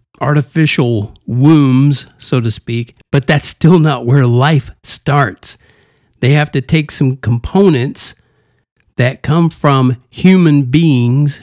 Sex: male